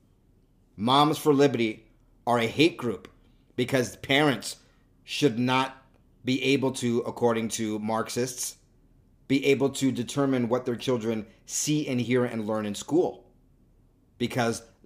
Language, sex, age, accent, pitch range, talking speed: English, male, 40-59, American, 110-135 Hz, 130 wpm